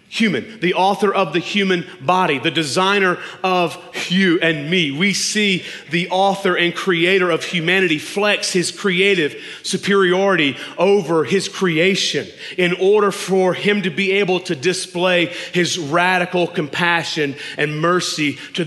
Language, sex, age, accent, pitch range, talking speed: English, male, 40-59, American, 165-195 Hz, 140 wpm